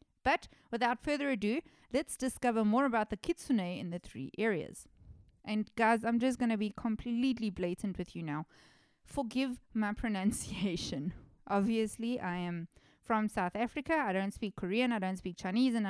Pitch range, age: 195-250 Hz, 20-39